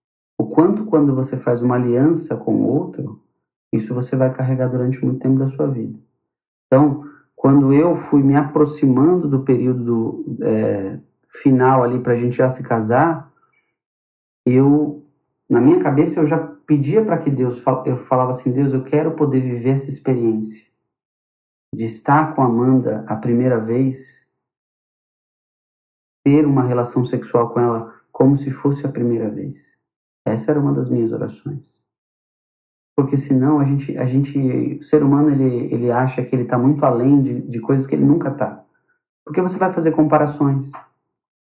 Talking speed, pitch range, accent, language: 160 wpm, 125-150 Hz, Brazilian, Portuguese